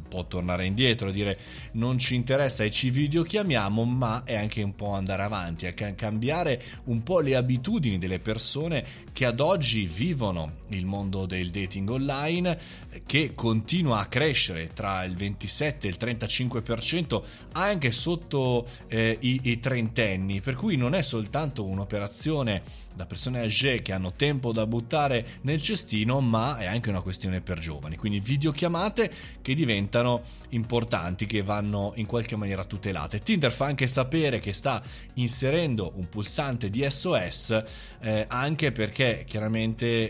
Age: 20-39